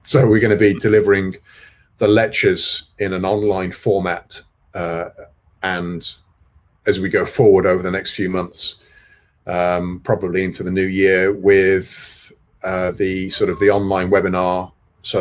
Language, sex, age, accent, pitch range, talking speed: English, male, 40-59, British, 90-110 Hz, 150 wpm